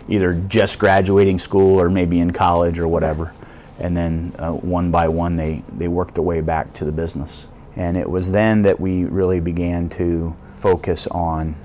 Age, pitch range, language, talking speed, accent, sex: 30-49, 80-95 Hz, English, 185 wpm, American, male